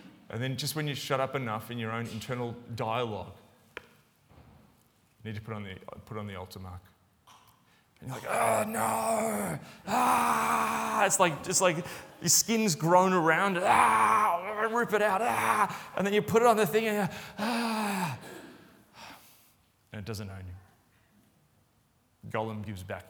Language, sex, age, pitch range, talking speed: English, male, 30-49, 110-150 Hz, 160 wpm